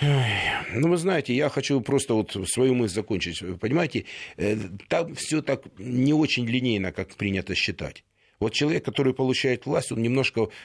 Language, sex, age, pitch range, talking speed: Russian, male, 50-69, 100-135 Hz, 150 wpm